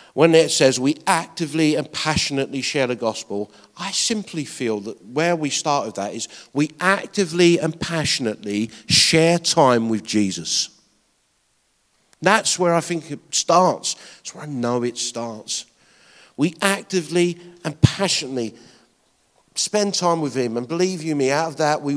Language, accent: English, British